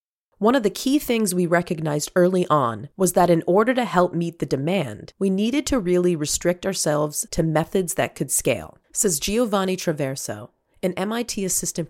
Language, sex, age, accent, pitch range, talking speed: English, female, 30-49, American, 155-200 Hz, 175 wpm